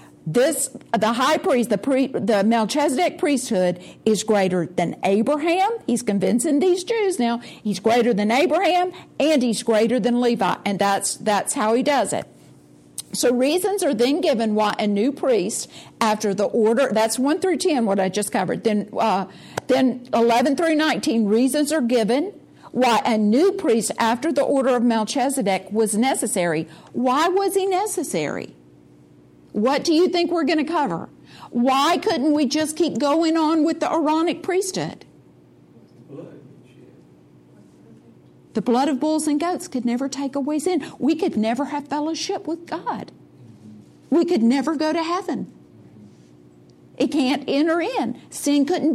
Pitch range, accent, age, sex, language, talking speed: 205-310 Hz, American, 50-69, female, English, 155 wpm